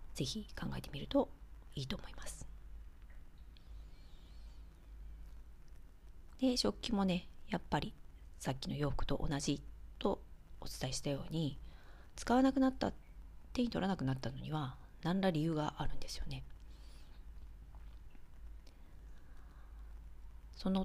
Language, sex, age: Japanese, female, 40-59